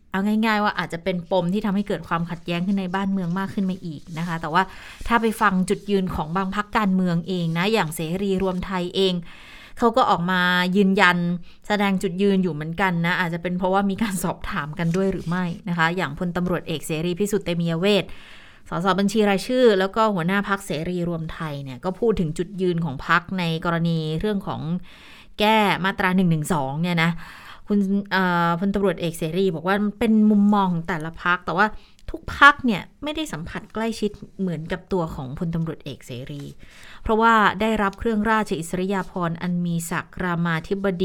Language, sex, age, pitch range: Thai, female, 20-39, 170-200 Hz